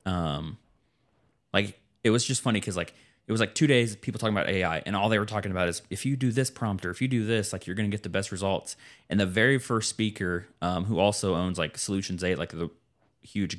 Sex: male